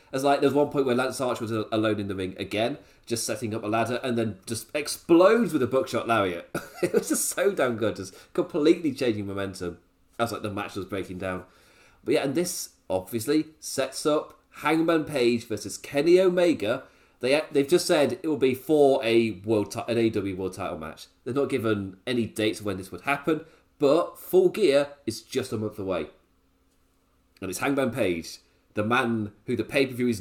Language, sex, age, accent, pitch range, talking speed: English, male, 30-49, British, 100-140 Hz, 195 wpm